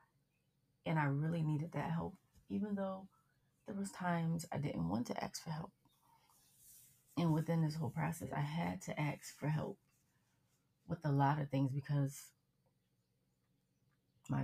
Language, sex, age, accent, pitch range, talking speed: English, female, 30-49, American, 135-155 Hz, 150 wpm